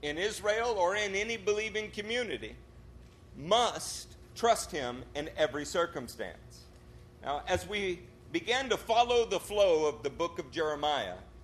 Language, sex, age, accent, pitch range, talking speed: English, male, 50-69, American, 160-220 Hz, 135 wpm